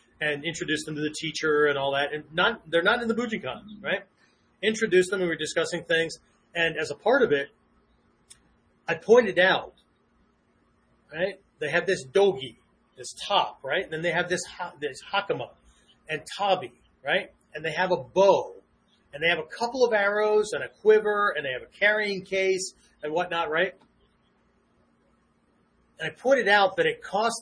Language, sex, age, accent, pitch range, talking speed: English, male, 30-49, American, 155-205 Hz, 180 wpm